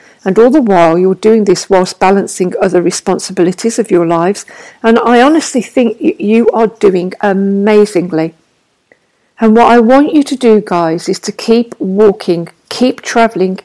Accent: British